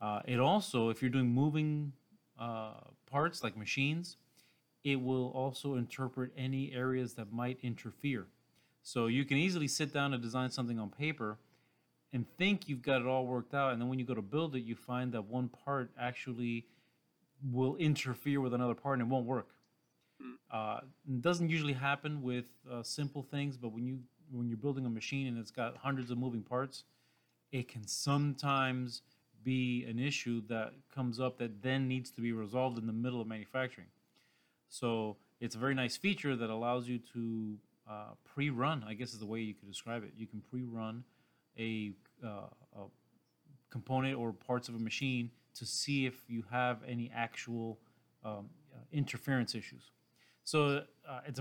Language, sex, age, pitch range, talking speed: English, male, 30-49, 115-135 Hz, 180 wpm